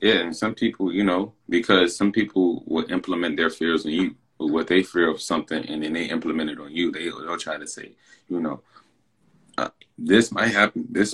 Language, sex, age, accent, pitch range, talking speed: English, male, 20-39, American, 80-95 Hz, 215 wpm